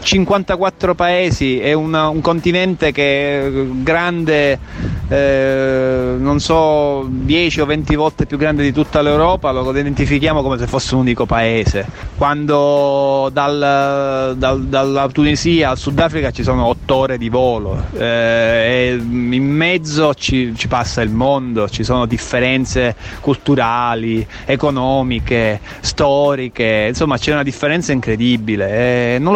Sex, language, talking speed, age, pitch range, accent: male, Italian, 130 wpm, 30-49, 120-150 Hz, native